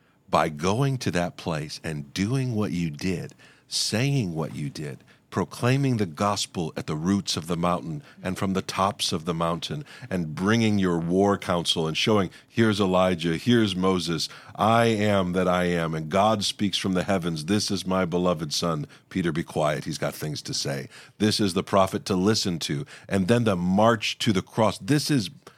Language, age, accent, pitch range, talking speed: English, 50-69, American, 85-110 Hz, 190 wpm